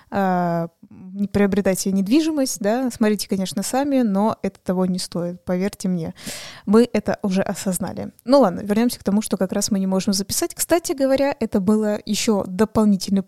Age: 20-39